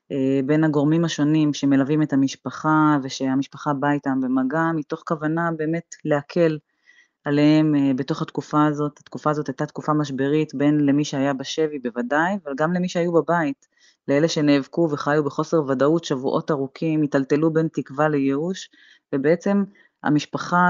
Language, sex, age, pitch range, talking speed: Hebrew, female, 20-39, 140-165 Hz, 135 wpm